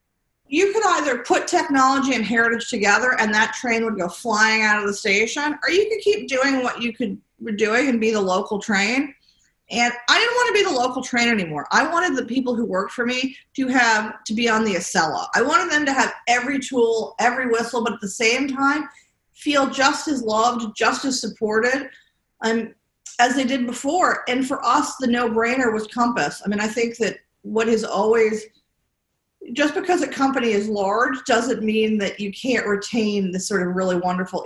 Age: 40-59